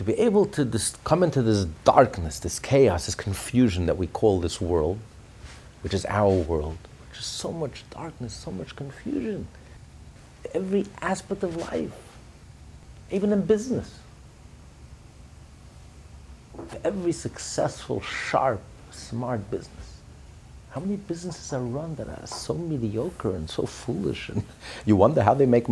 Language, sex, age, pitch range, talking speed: English, male, 50-69, 95-130 Hz, 140 wpm